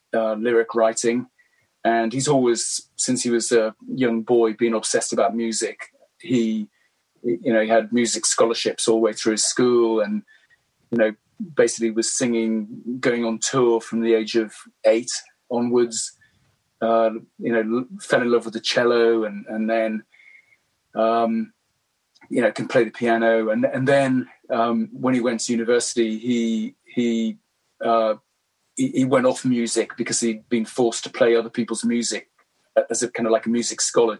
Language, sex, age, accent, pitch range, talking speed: English, male, 30-49, British, 110-120 Hz, 170 wpm